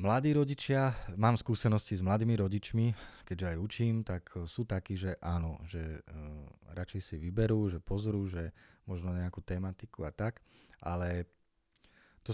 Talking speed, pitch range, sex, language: 145 wpm, 85-105 Hz, male, Slovak